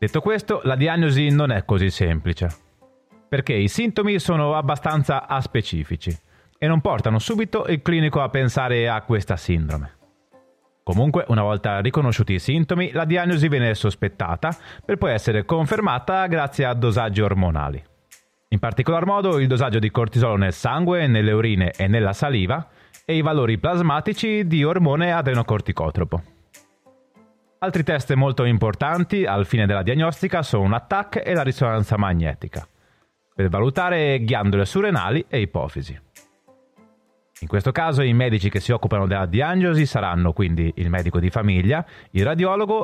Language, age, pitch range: Italian, 30-49, 100-165 Hz